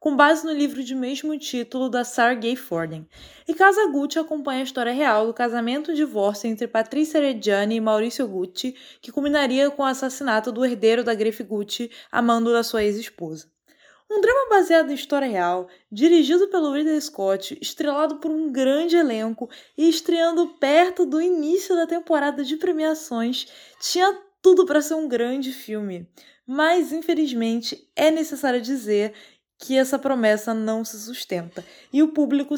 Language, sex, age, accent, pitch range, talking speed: Portuguese, female, 20-39, Brazilian, 225-310 Hz, 160 wpm